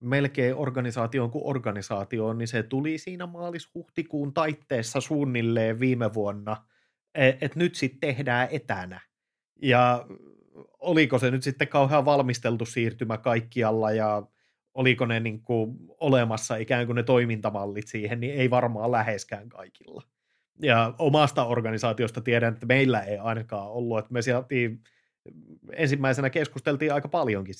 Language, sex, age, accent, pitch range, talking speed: Finnish, male, 30-49, native, 115-140 Hz, 125 wpm